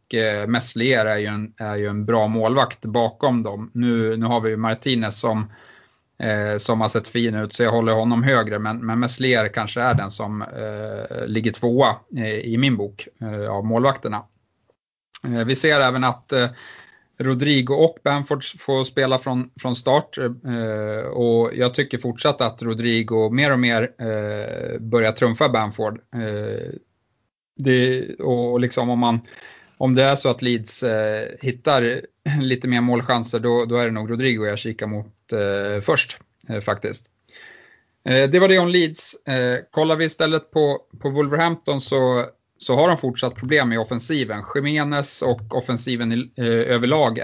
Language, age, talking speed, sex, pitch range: Swedish, 30-49, 150 wpm, male, 110-130 Hz